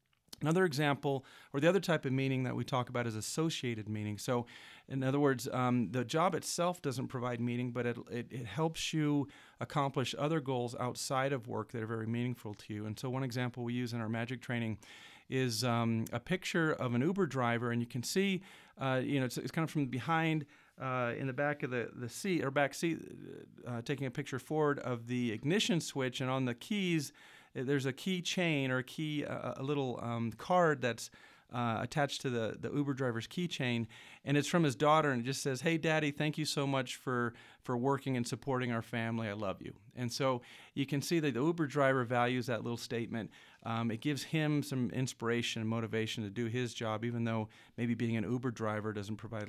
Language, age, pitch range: English, 40-59, 115-145 Hz